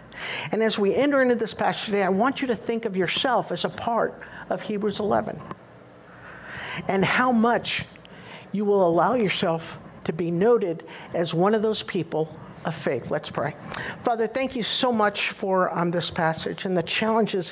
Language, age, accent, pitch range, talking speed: English, 60-79, American, 160-205 Hz, 180 wpm